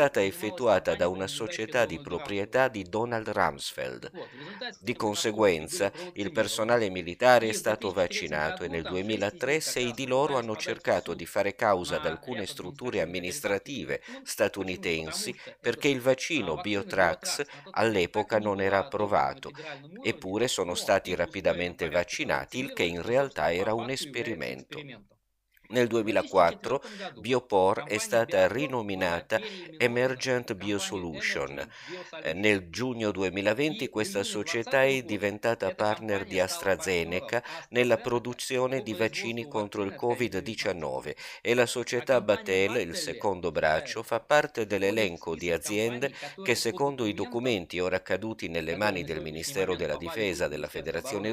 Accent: native